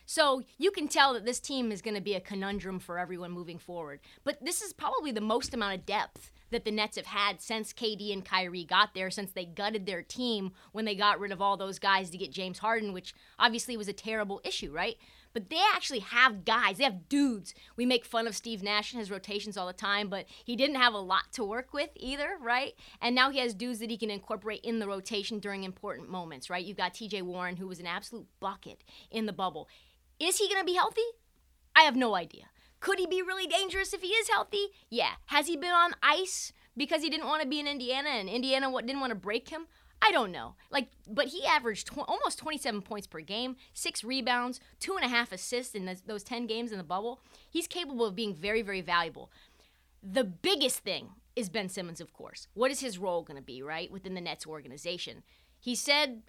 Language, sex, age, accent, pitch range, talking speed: English, female, 20-39, American, 200-270 Hz, 230 wpm